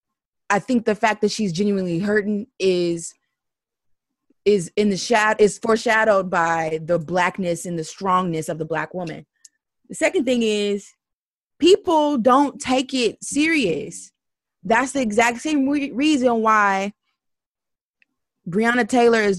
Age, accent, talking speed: 20-39, American, 135 wpm